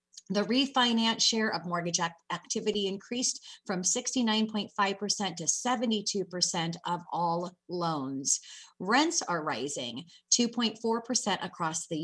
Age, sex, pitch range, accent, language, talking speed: 30-49, female, 175-220 Hz, American, English, 100 wpm